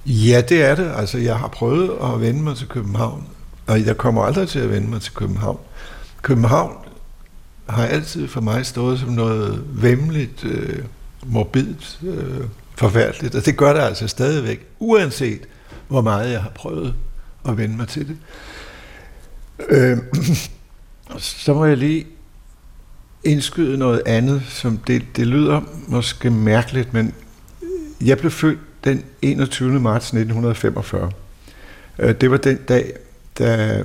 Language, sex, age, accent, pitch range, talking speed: Danish, male, 60-79, native, 105-135 Hz, 140 wpm